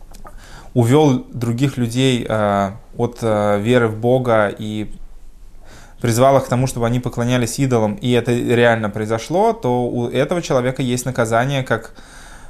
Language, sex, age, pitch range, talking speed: Russian, male, 20-39, 105-125 Hz, 140 wpm